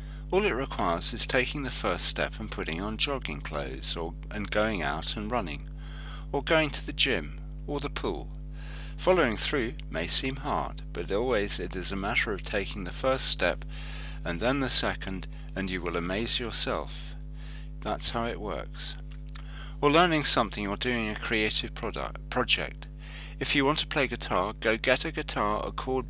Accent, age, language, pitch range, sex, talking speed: British, 50-69, English, 105-145 Hz, male, 175 wpm